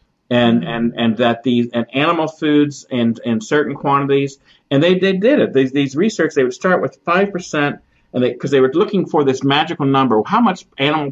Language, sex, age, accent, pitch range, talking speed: English, male, 50-69, American, 115-150 Hz, 210 wpm